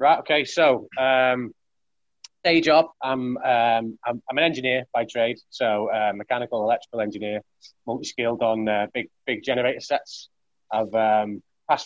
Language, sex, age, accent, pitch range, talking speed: English, male, 20-39, British, 110-130 Hz, 145 wpm